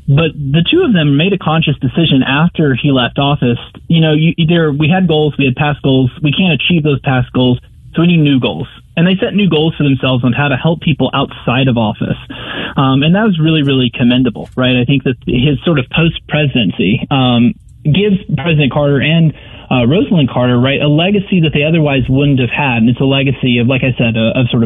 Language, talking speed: English, 215 wpm